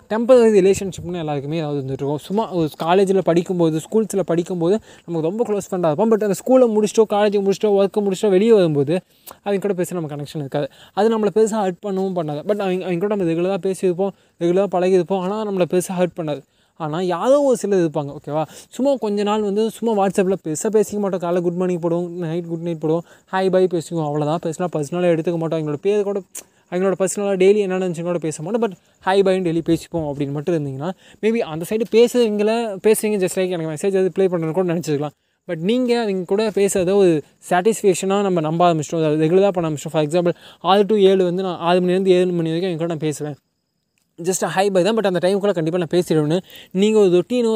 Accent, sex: native, male